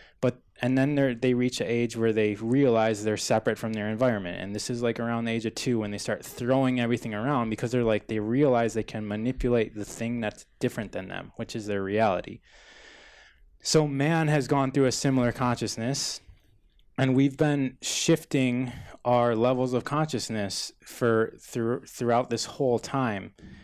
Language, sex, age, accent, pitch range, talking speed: English, male, 20-39, American, 105-120 Hz, 175 wpm